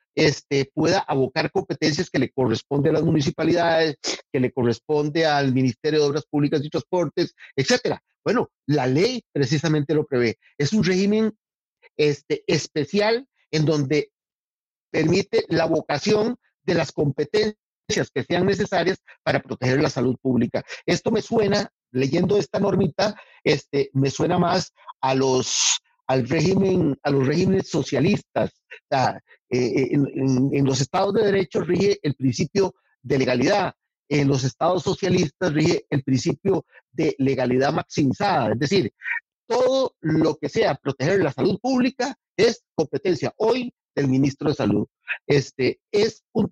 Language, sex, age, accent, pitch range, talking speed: Spanish, male, 50-69, Mexican, 140-200 Hz, 140 wpm